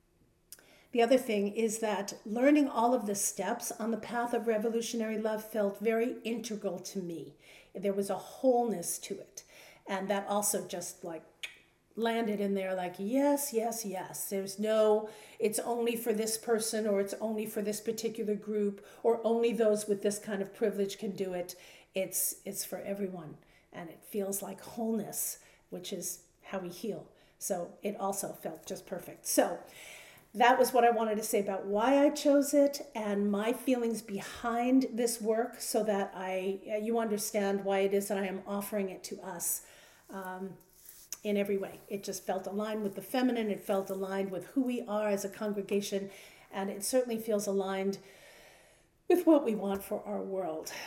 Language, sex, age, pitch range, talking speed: English, female, 50-69, 195-230 Hz, 180 wpm